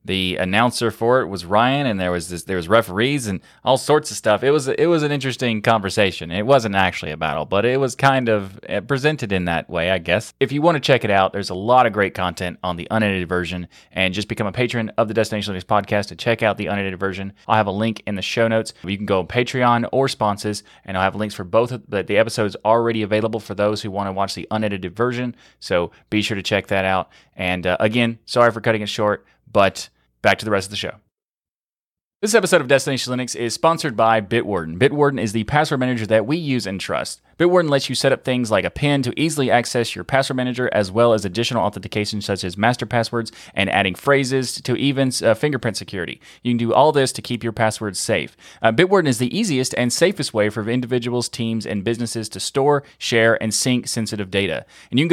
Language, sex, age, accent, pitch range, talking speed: English, male, 20-39, American, 100-125 Hz, 235 wpm